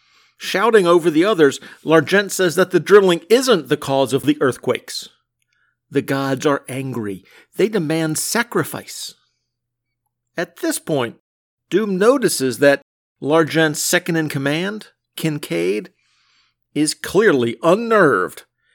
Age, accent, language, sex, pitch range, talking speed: 50-69, American, English, male, 145-215 Hz, 110 wpm